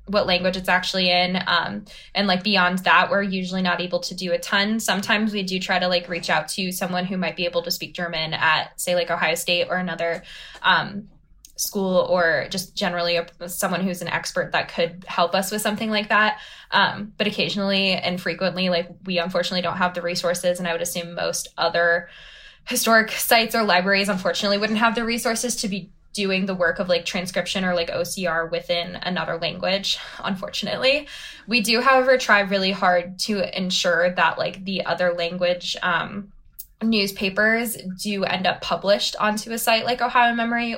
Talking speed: 185 wpm